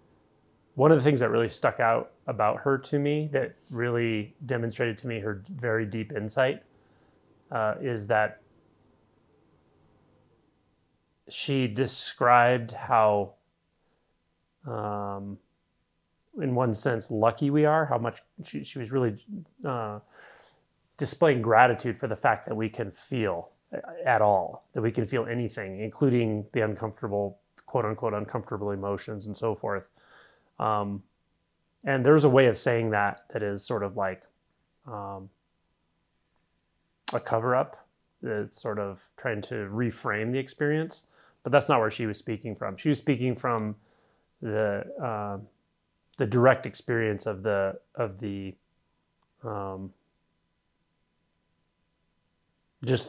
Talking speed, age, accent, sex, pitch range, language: 130 wpm, 30-49, American, male, 100-120 Hz, English